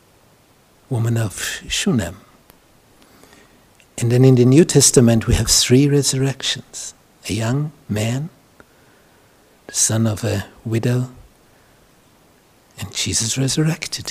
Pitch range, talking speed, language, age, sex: 110-145 Hz, 100 wpm, English, 60-79, male